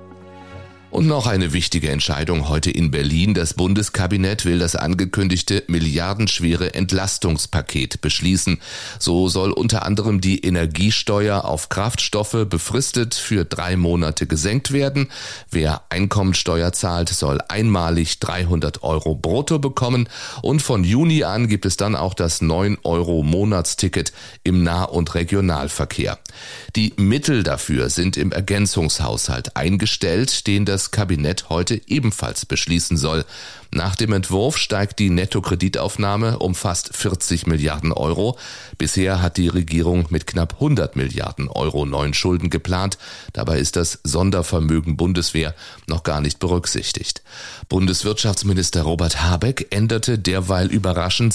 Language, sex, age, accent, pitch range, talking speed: German, male, 30-49, German, 85-105 Hz, 125 wpm